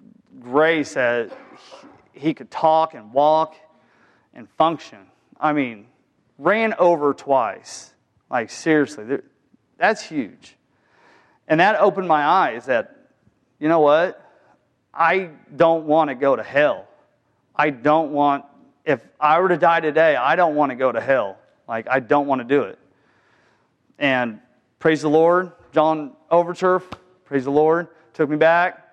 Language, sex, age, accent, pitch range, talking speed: English, male, 40-59, American, 130-165 Hz, 145 wpm